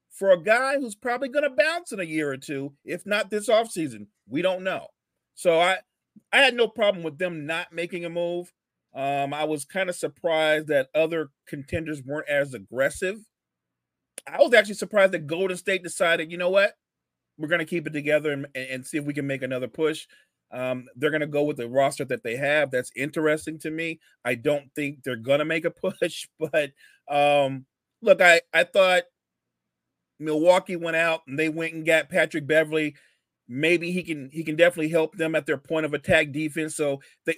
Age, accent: 40-59, American